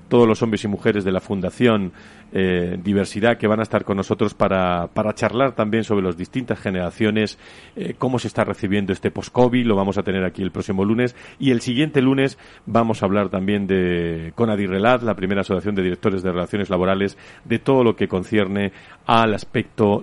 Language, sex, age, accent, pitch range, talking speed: Spanish, male, 40-59, Spanish, 95-125 Hz, 195 wpm